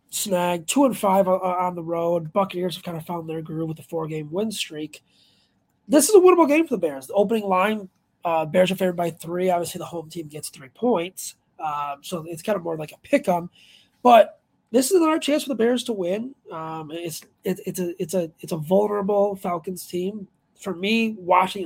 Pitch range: 160-200 Hz